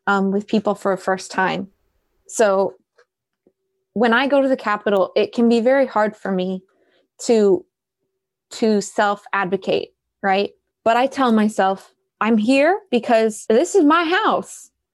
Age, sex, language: 20-39, female, English